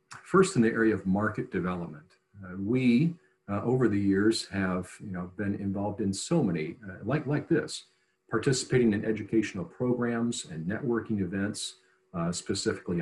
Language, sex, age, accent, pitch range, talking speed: English, male, 50-69, American, 95-115 Hz, 155 wpm